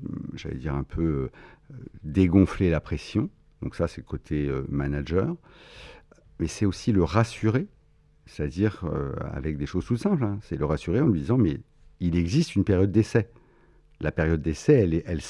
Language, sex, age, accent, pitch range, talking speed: French, male, 60-79, French, 75-100 Hz, 170 wpm